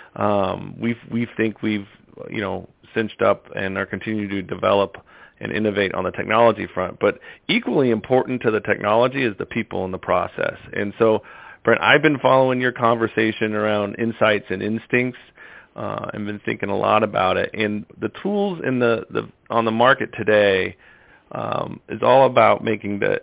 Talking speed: 175 wpm